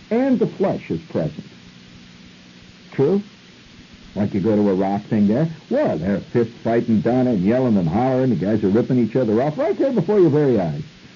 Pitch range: 90-140 Hz